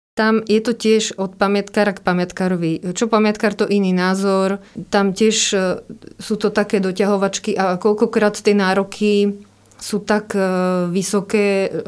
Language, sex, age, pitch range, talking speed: Slovak, female, 30-49, 180-205 Hz, 130 wpm